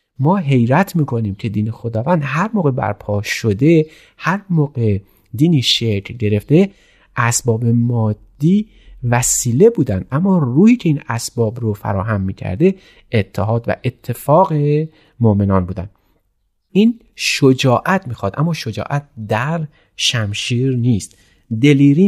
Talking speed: 110 wpm